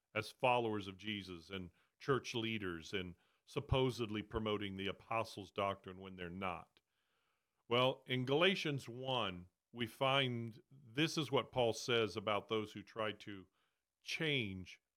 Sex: male